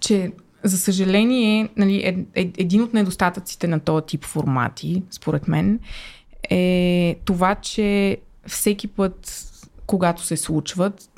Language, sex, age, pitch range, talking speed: Bulgarian, female, 20-39, 165-200 Hz, 115 wpm